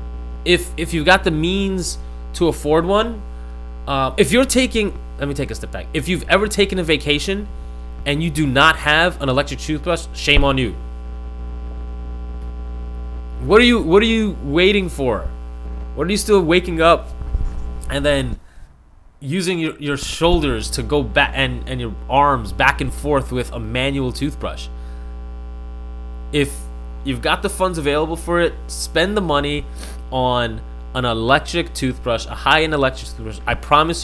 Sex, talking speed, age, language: male, 160 wpm, 20-39, English